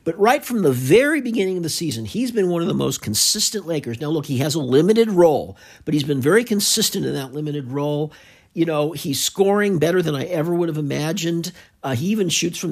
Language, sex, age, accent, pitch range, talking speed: English, male, 50-69, American, 140-185 Hz, 230 wpm